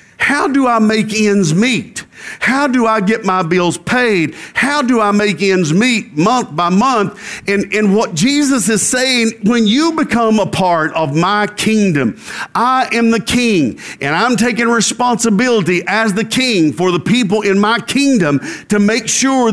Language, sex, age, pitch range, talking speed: English, male, 50-69, 200-245 Hz, 170 wpm